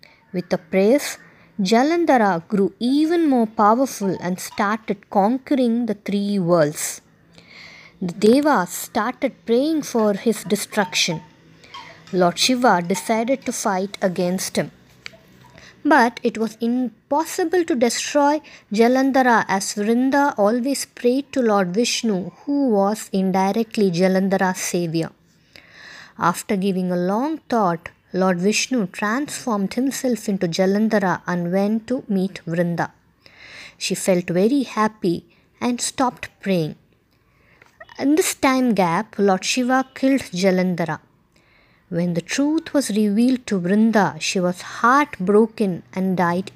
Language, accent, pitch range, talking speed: English, Indian, 190-255 Hz, 115 wpm